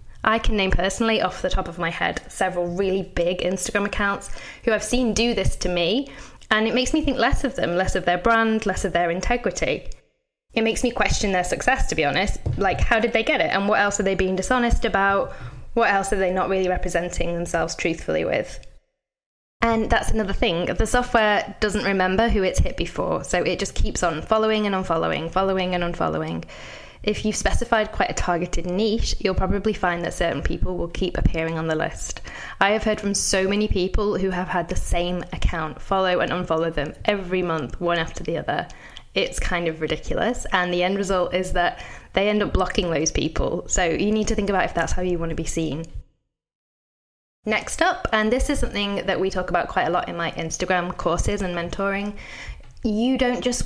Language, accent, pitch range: English, British, 175-215 Hz